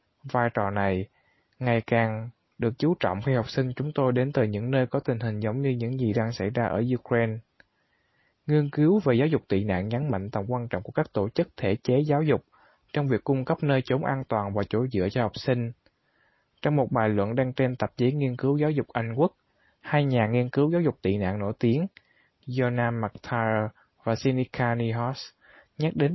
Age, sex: 20-39, male